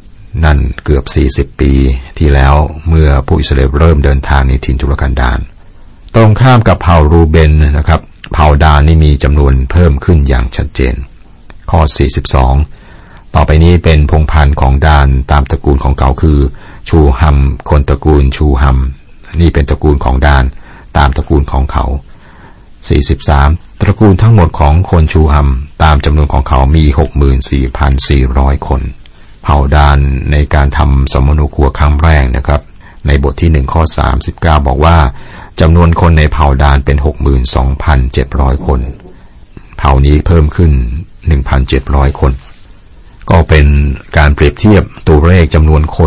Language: Thai